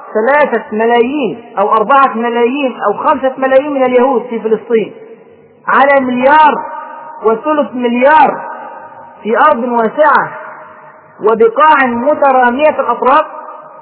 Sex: male